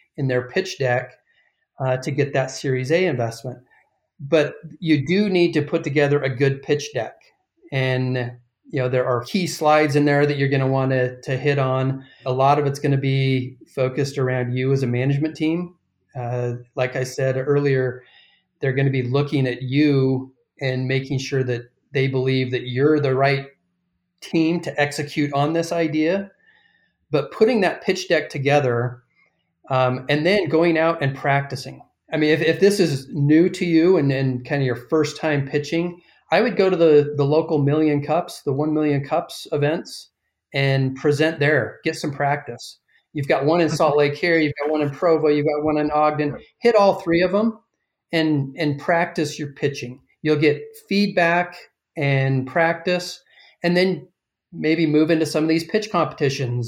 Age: 30-49